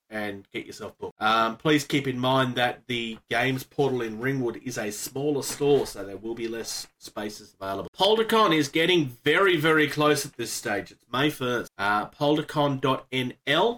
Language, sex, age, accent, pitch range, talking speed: English, male, 30-49, Australian, 125-175 Hz, 175 wpm